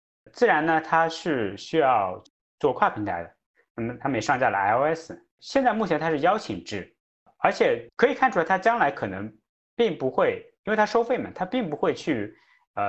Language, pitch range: Chinese, 115-190 Hz